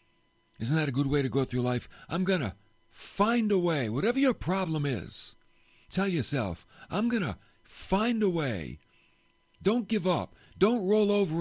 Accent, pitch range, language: American, 120-175 Hz, English